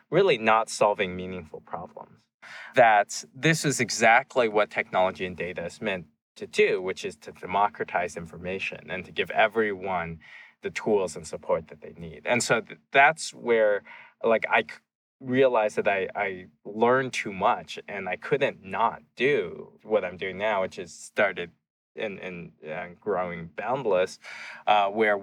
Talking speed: 150 wpm